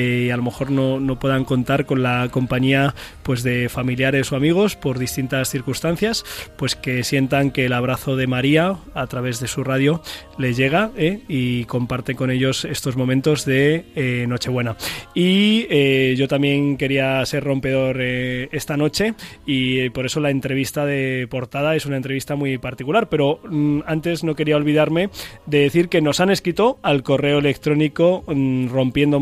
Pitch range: 130-155 Hz